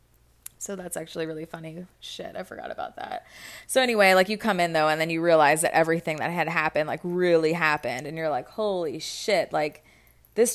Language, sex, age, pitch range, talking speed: English, female, 20-39, 160-185 Hz, 205 wpm